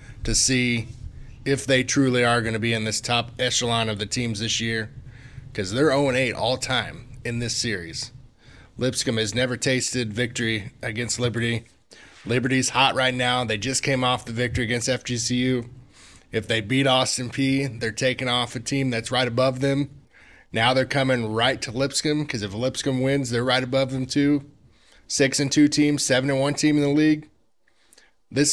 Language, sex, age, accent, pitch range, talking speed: English, male, 20-39, American, 120-140 Hz, 180 wpm